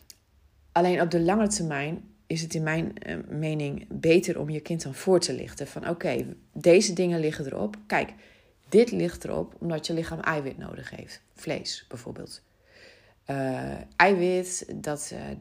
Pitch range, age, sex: 140-195 Hz, 30-49, female